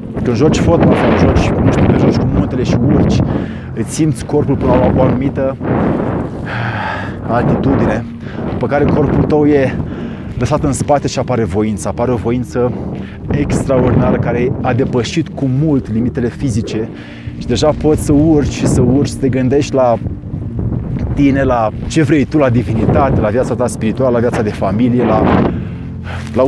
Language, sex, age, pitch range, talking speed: Romanian, male, 20-39, 115-145 Hz, 155 wpm